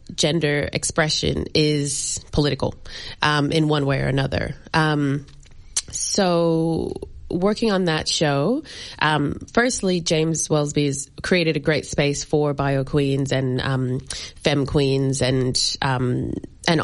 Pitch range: 140-170 Hz